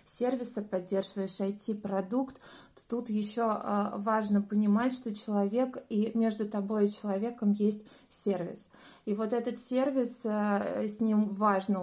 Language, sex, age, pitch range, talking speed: Russian, female, 20-39, 195-220 Hz, 115 wpm